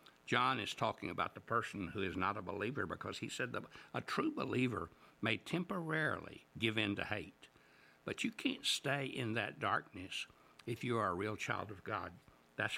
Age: 60-79